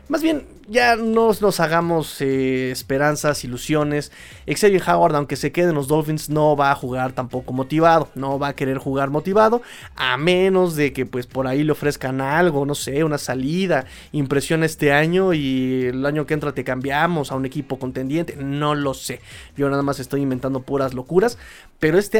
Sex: male